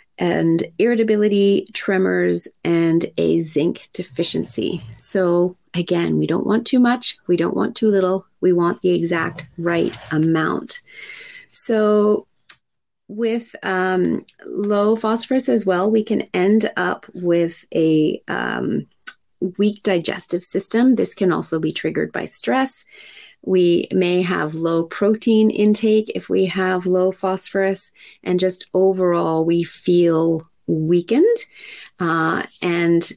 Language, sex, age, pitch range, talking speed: English, female, 30-49, 165-210 Hz, 125 wpm